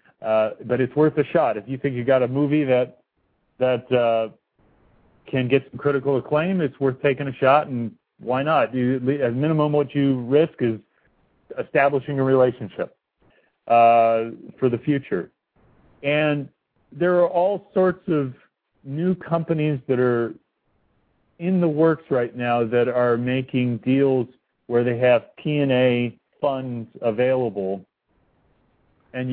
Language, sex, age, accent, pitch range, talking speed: English, male, 50-69, American, 110-140 Hz, 145 wpm